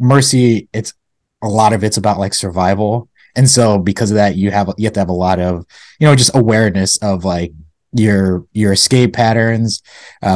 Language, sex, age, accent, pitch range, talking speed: English, male, 20-39, American, 95-115 Hz, 195 wpm